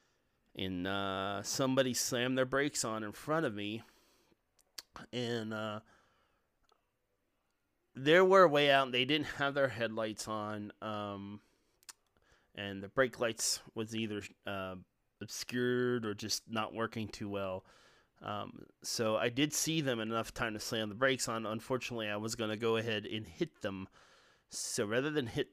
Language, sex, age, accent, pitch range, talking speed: English, male, 30-49, American, 105-125 Hz, 160 wpm